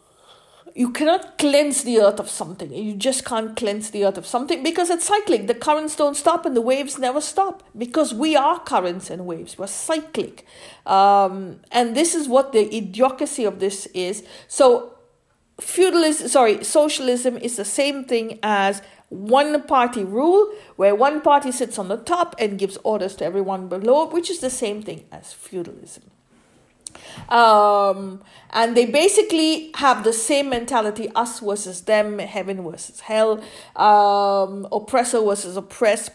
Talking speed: 155 wpm